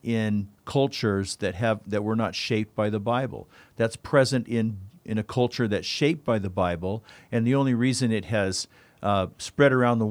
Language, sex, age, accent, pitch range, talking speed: English, male, 50-69, American, 100-120 Hz, 190 wpm